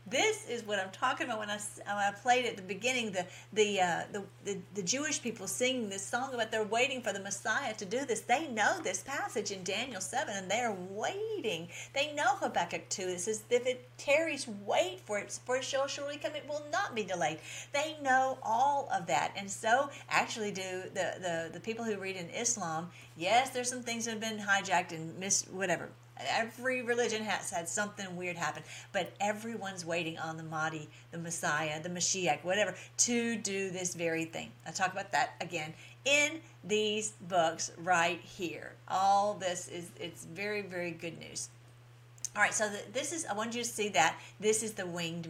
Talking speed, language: 200 wpm, English